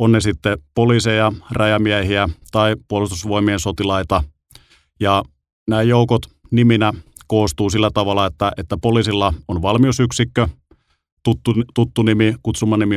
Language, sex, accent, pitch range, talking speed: Finnish, male, native, 90-110 Hz, 115 wpm